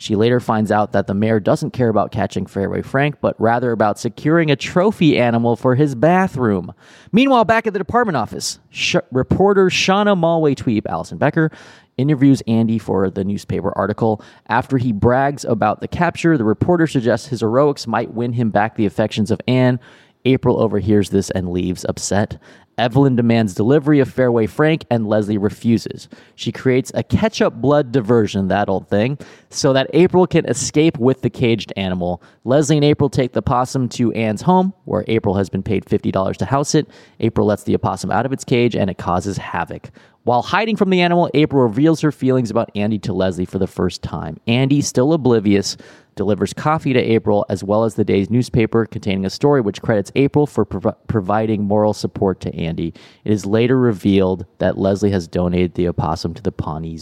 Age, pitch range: 20-39, 105-150 Hz